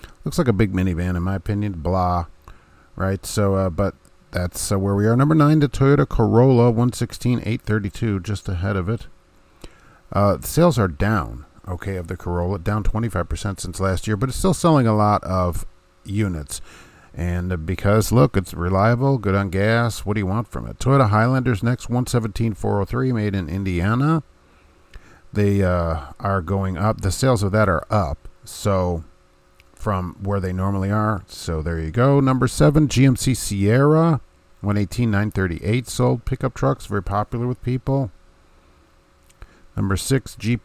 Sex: male